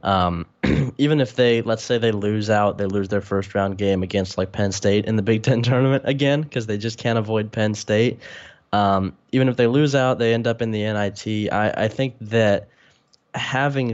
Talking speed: 210 wpm